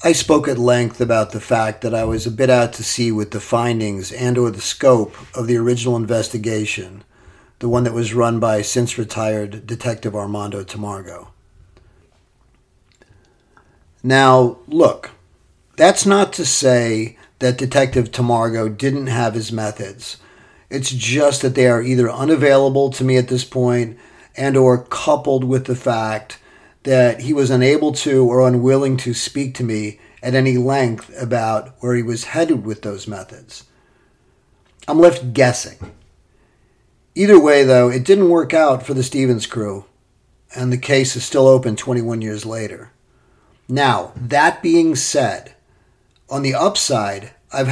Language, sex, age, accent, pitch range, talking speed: English, male, 40-59, American, 110-130 Hz, 150 wpm